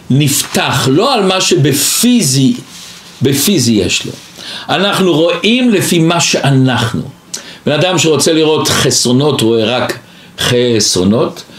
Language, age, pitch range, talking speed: Hebrew, 60-79, 130-180 Hz, 115 wpm